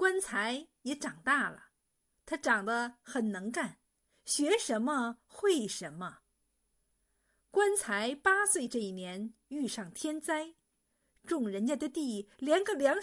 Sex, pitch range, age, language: female, 220-320 Hz, 50-69, Chinese